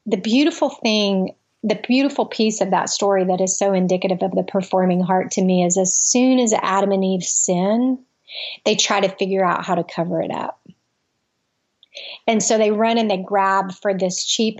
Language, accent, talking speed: English, American, 195 wpm